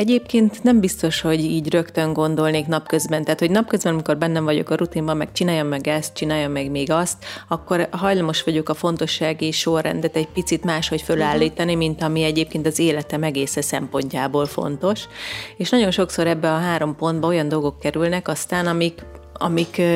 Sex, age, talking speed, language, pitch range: female, 30-49, 170 wpm, Hungarian, 155-175 Hz